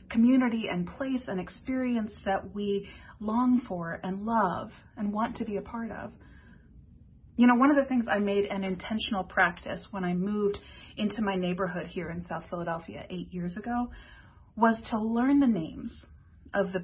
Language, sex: English, female